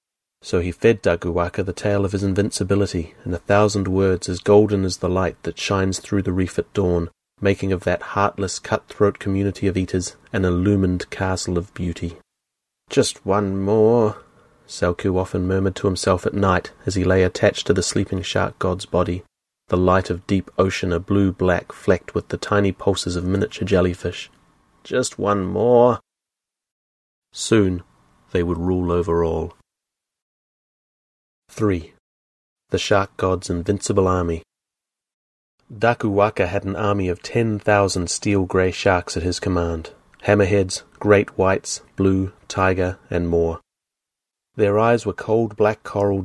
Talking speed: 145 wpm